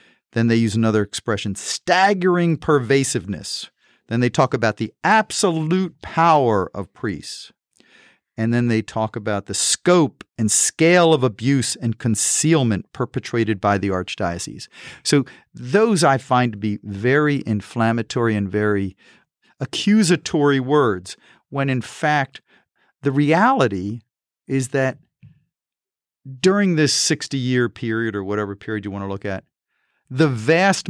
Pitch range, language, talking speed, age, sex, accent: 110-150 Hz, English, 130 wpm, 50-69, male, American